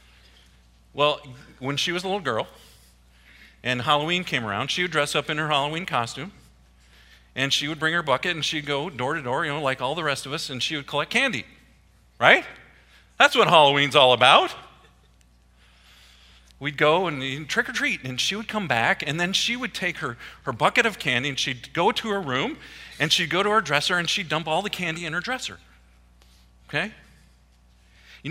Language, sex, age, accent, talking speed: English, male, 40-59, American, 190 wpm